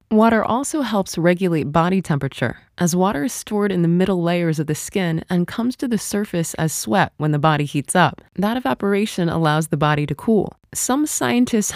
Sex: female